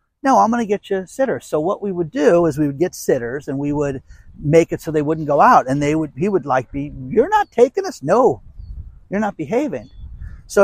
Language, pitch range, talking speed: English, 130-170 Hz, 245 wpm